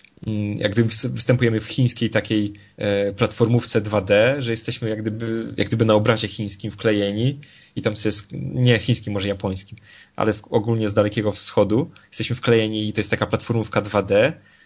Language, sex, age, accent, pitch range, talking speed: Polish, male, 20-39, native, 110-140 Hz, 160 wpm